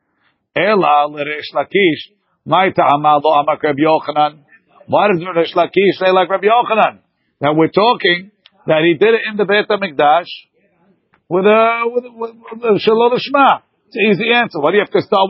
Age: 50-69